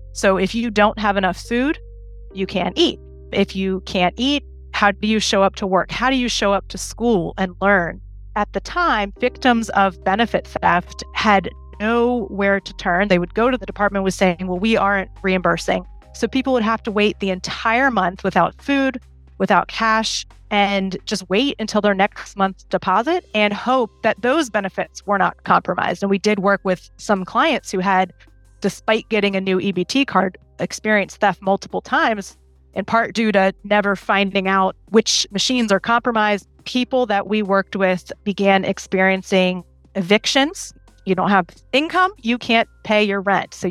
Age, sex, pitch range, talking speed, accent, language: 30-49, female, 190-225 Hz, 180 wpm, American, English